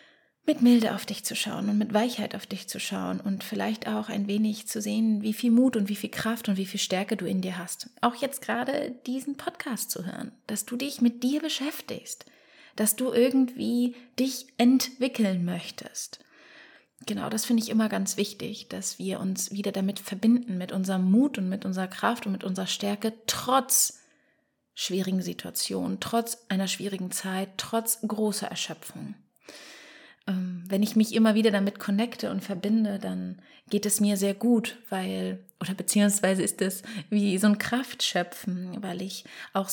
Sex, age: female, 30-49